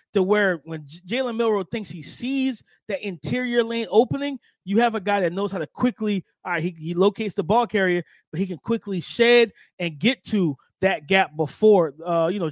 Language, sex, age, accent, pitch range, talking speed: English, male, 20-39, American, 175-230 Hz, 210 wpm